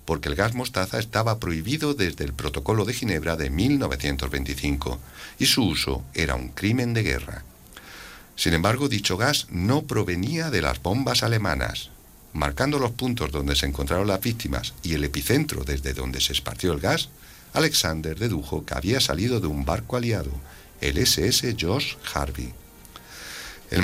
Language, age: Spanish, 60-79